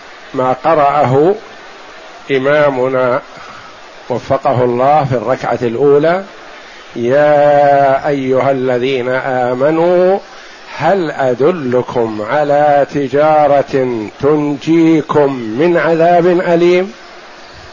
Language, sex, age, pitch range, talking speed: Arabic, male, 50-69, 140-190 Hz, 70 wpm